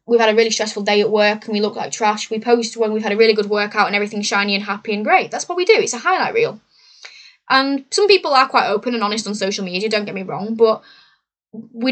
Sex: female